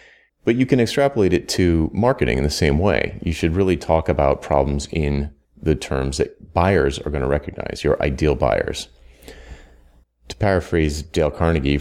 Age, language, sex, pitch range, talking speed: 30-49, English, male, 70-95 Hz, 170 wpm